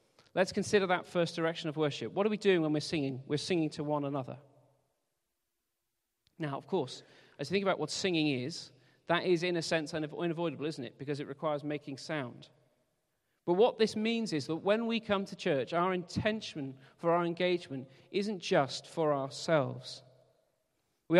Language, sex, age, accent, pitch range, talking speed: English, male, 40-59, British, 140-180 Hz, 180 wpm